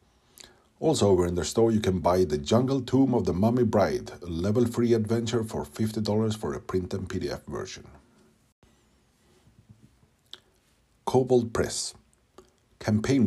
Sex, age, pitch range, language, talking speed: male, 50-69, 95-120 Hz, English, 135 wpm